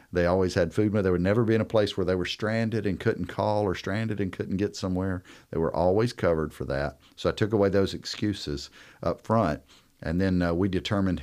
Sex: male